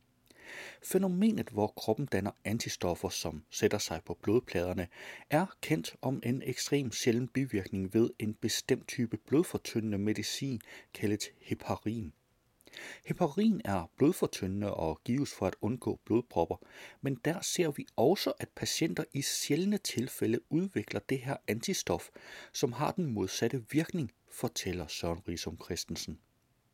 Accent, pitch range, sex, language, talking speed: native, 100-145 Hz, male, Danish, 130 wpm